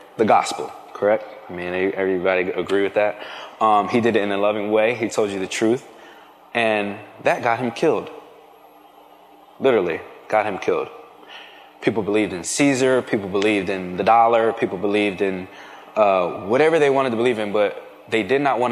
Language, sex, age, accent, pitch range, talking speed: English, male, 20-39, American, 100-120 Hz, 175 wpm